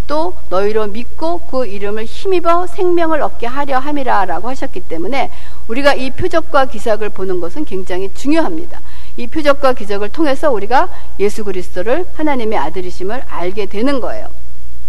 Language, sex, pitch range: Korean, female, 210-295 Hz